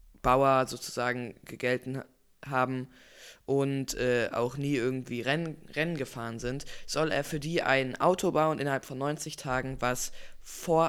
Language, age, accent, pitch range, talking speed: German, 20-39, German, 120-140 Hz, 150 wpm